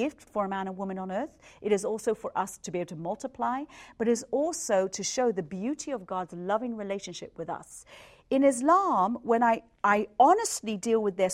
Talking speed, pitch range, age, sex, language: 215 wpm, 190-260 Hz, 40-59, female, English